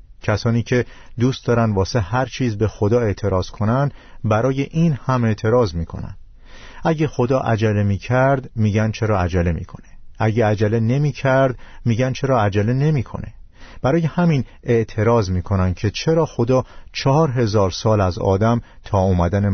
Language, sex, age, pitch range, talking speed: Persian, male, 50-69, 95-125 Hz, 140 wpm